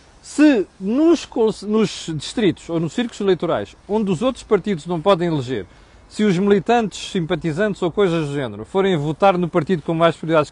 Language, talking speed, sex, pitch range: Portuguese, 170 wpm, male, 150-195 Hz